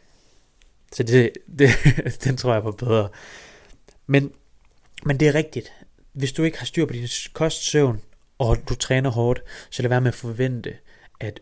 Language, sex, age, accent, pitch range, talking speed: Danish, male, 30-49, native, 115-145 Hz, 175 wpm